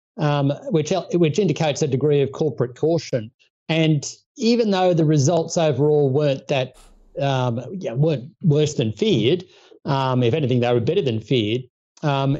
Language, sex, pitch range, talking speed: English, male, 130-155 Hz, 155 wpm